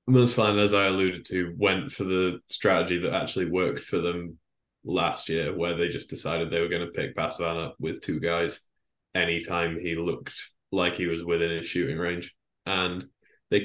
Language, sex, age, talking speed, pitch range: English, male, 20-39, 185 wpm, 85-95 Hz